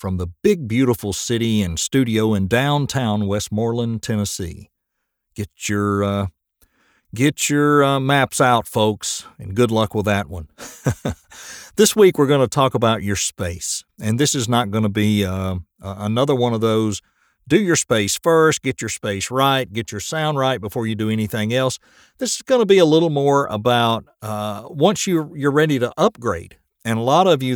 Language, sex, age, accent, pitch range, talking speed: English, male, 50-69, American, 105-145 Hz, 185 wpm